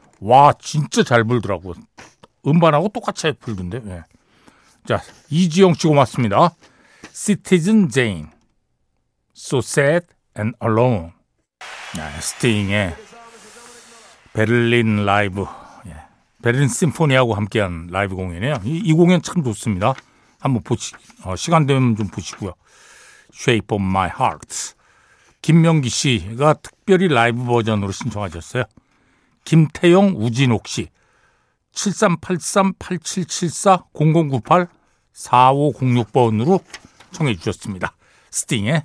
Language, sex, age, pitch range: Korean, male, 60-79, 110-175 Hz